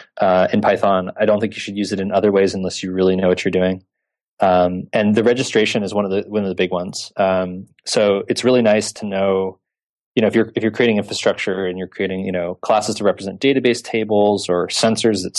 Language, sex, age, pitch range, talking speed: English, male, 20-39, 95-110 Hz, 240 wpm